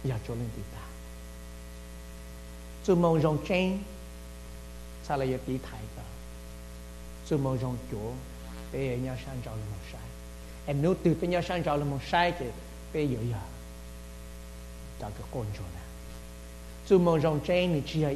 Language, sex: English, male